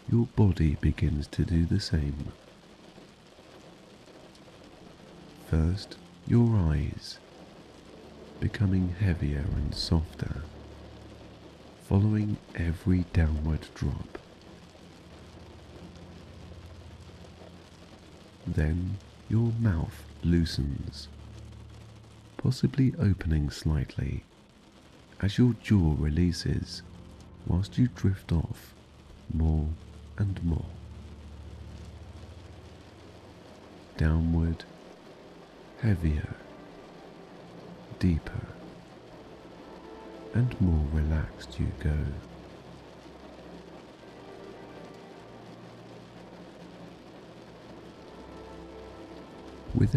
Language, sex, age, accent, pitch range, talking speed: English, male, 50-69, British, 80-105 Hz, 55 wpm